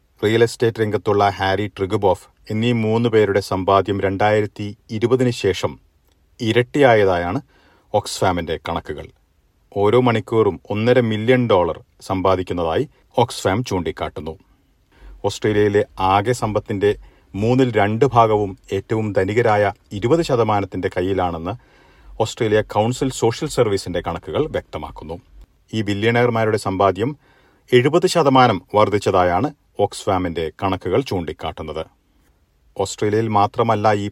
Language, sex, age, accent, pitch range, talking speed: Malayalam, male, 40-59, native, 95-115 Hz, 90 wpm